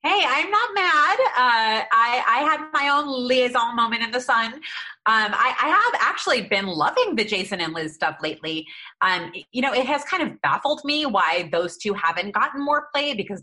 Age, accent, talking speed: 30-49, American, 200 wpm